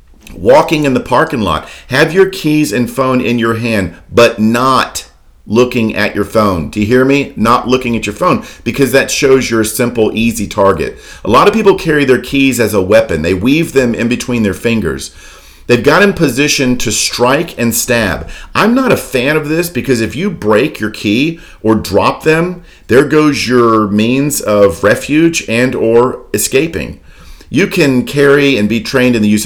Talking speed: 190 wpm